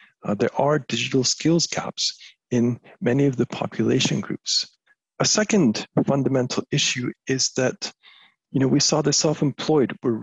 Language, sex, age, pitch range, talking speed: English, male, 50-69, 115-150 Hz, 135 wpm